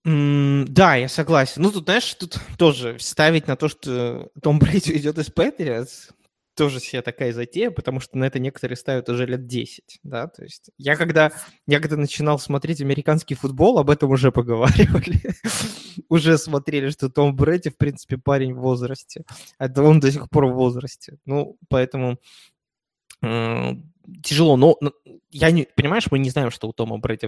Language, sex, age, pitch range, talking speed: Russian, male, 20-39, 125-155 Hz, 165 wpm